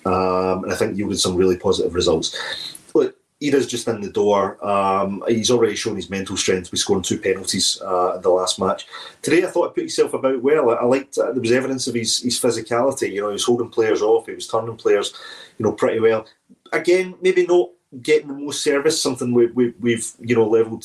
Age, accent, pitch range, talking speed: 30-49, British, 100-150 Hz, 225 wpm